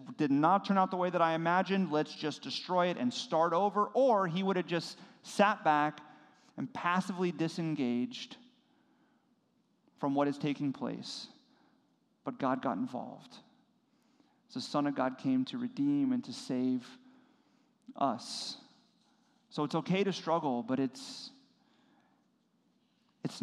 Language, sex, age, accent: English, male, 40-59, American